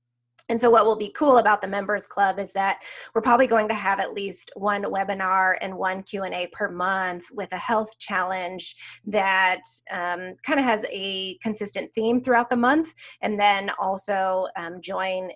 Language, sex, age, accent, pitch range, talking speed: English, female, 20-39, American, 185-235 Hz, 180 wpm